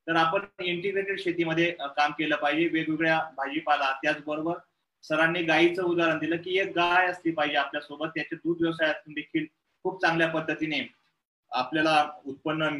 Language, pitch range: English, 155-175 Hz